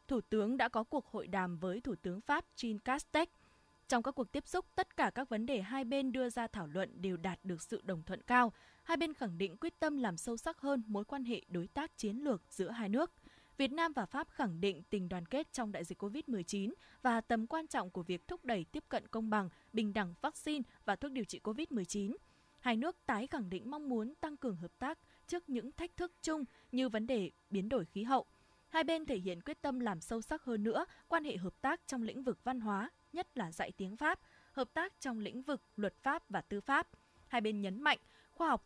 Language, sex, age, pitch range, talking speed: Vietnamese, female, 20-39, 205-285 Hz, 235 wpm